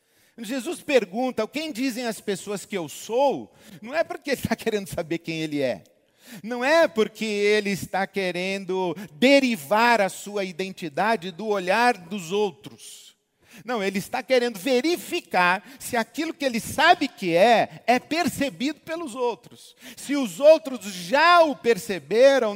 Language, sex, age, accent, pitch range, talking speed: Portuguese, male, 50-69, Brazilian, 185-265 Hz, 150 wpm